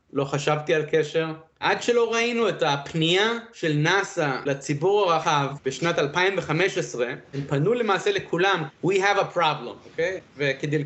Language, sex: Hebrew, male